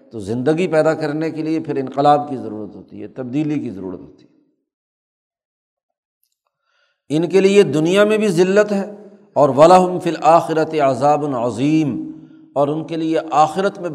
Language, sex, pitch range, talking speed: Urdu, male, 140-175 Hz, 160 wpm